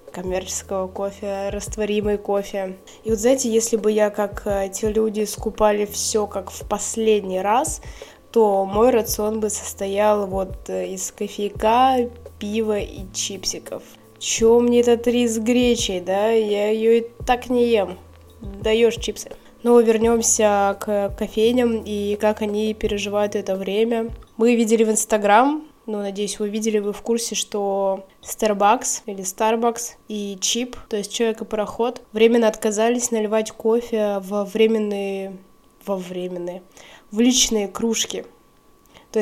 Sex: female